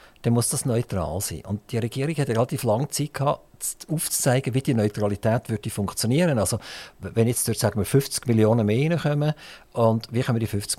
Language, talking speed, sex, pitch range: German, 185 wpm, male, 105-140 Hz